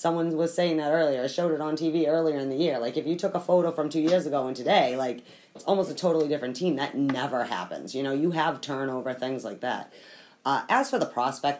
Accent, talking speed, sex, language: American, 255 wpm, female, English